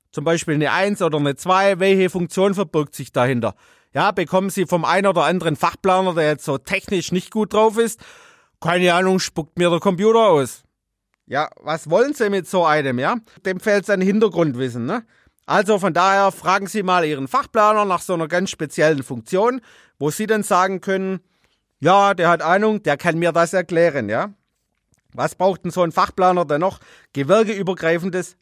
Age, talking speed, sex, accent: 40-59, 180 wpm, male, German